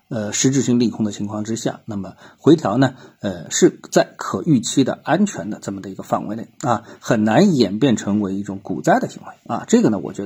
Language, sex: Chinese, male